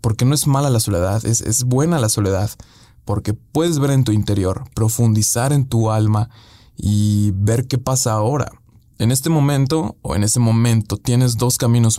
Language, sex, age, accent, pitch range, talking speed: Spanish, male, 20-39, Mexican, 105-125 Hz, 180 wpm